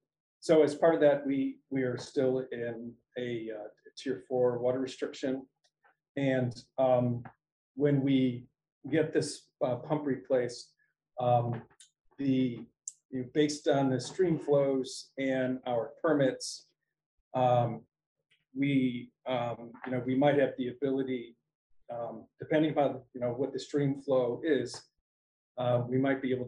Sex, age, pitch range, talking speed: male, 40-59, 125-145 Hz, 140 wpm